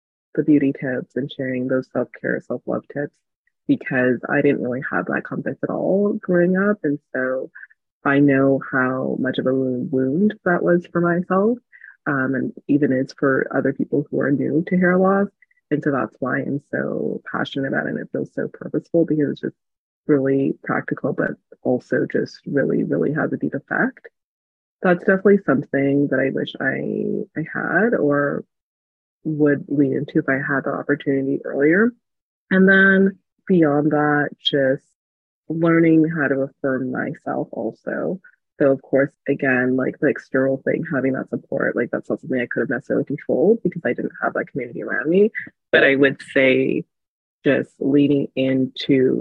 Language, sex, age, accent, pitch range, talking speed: English, female, 30-49, American, 130-165 Hz, 170 wpm